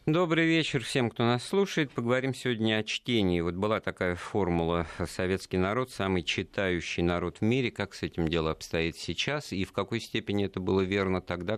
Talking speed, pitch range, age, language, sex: 180 wpm, 80-105 Hz, 50-69, Russian, male